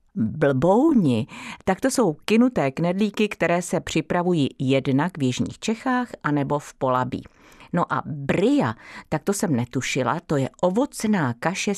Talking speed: 140 wpm